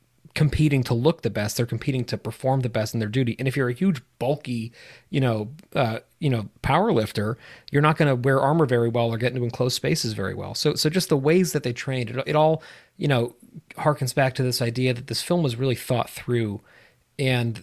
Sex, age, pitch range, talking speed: male, 30-49, 115-145 Hz, 230 wpm